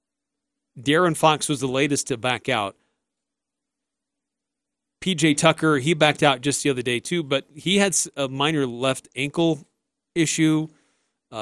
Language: English